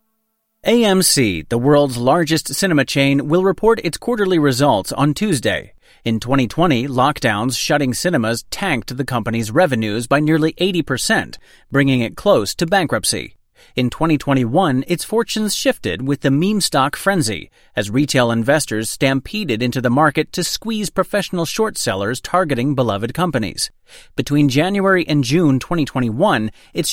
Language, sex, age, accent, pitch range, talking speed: English, male, 30-49, American, 125-175 Hz, 135 wpm